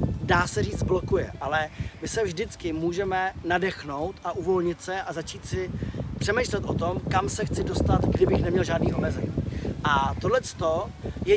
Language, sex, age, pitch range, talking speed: Czech, male, 30-49, 155-205 Hz, 160 wpm